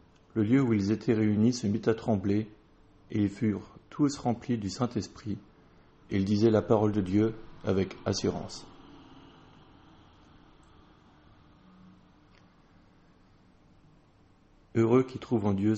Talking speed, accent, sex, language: 120 wpm, French, male, French